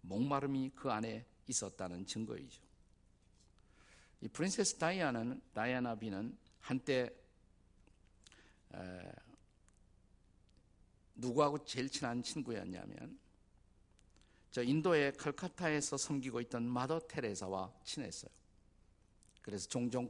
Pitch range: 95-140 Hz